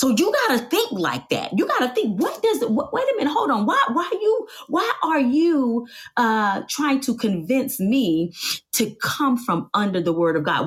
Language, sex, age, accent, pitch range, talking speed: English, female, 30-49, American, 165-265 Hz, 200 wpm